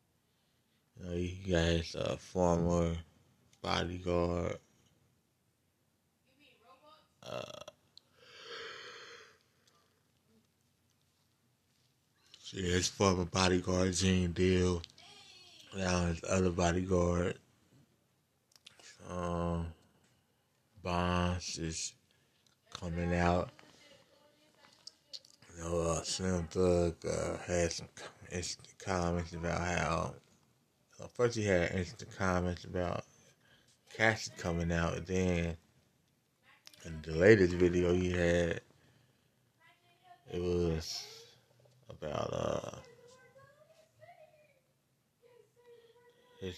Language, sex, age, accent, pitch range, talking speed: English, male, 20-39, American, 85-120 Hz, 70 wpm